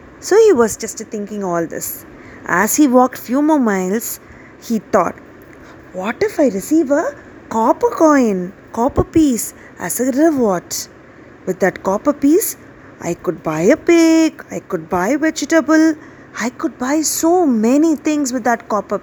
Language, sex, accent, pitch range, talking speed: Tamil, female, native, 205-290 Hz, 155 wpm